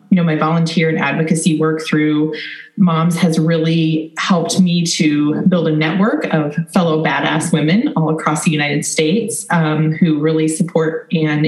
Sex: female